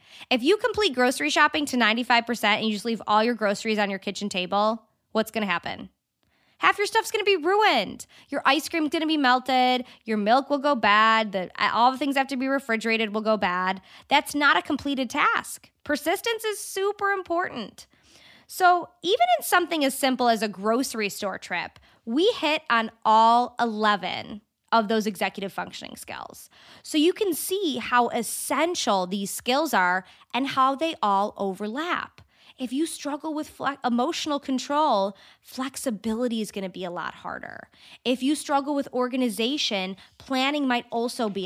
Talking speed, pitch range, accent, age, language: 170 wpm, 215-295 Hz, American, 20-39, English